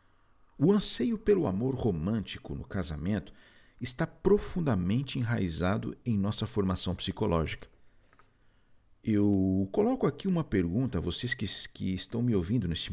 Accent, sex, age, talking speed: Brazilian, male, 50-69, 125 wpm